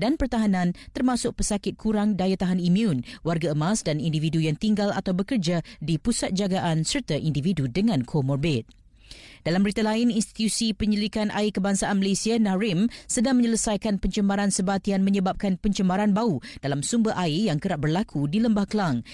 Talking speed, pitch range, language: 150 wpm, 175-215 Hz, Malay